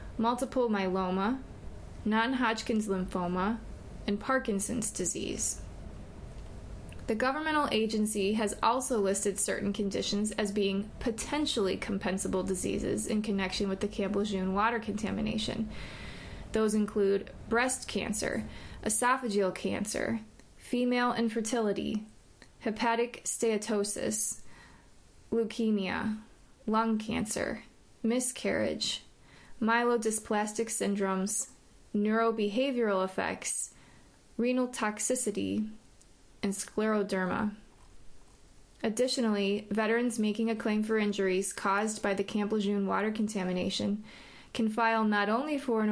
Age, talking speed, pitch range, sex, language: 20-39, 90 wpm, 200-230 Hz, female, English